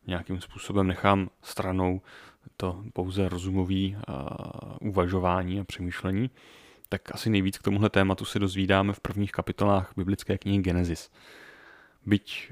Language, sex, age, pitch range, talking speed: Czech, male, 30-49, 95-105 Hz, 120 wpm